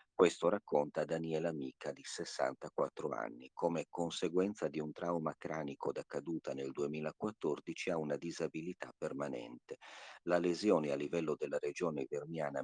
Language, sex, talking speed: Italian, male, 135 wpm